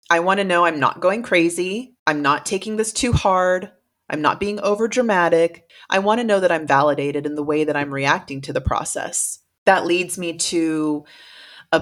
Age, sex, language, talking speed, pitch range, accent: 30-49, female, English, 200 wpm, 145-170 Hz, American